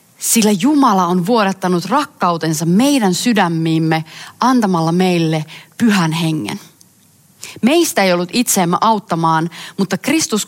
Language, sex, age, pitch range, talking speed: Finnish, female, 30-49, 165-230 Hz, 105 wpm